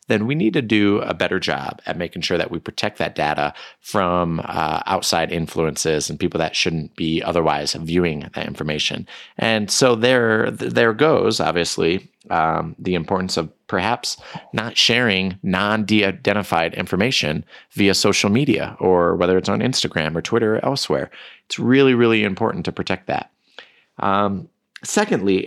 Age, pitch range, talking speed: 30-49, 80-100 Hz, 155 wpm